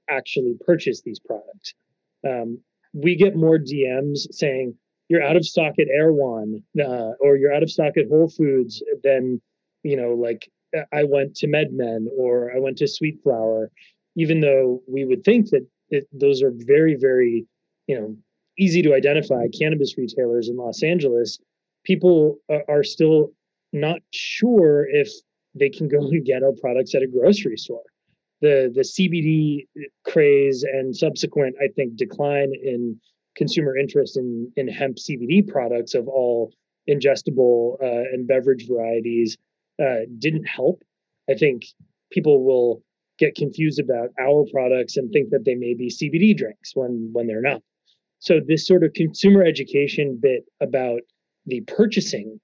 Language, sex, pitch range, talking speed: English, male, 125-165 Hz, 155 wpm